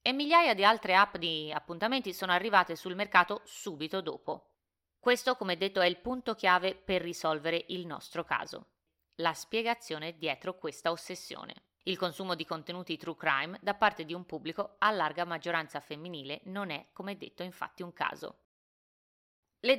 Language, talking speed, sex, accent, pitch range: Italian, 160 wpm, female, native, 155-200 Hz